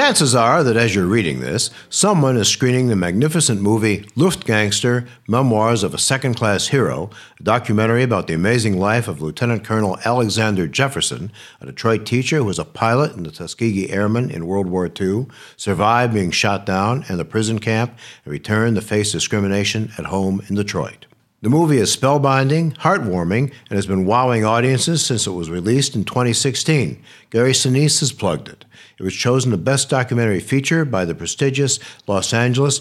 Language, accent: English, American